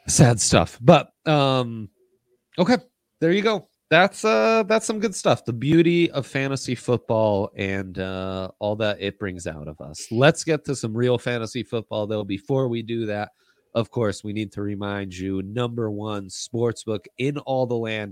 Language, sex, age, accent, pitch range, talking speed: English, male, 30-49, American, 95-125 Hz, 180 wpm